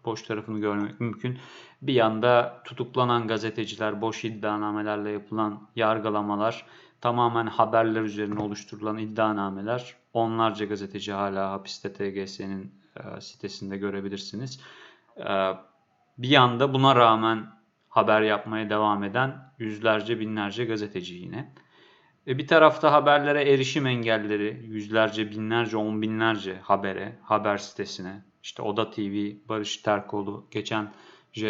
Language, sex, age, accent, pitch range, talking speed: Turkish, male, 30-49, native, 105-120 Hz, 110 wpm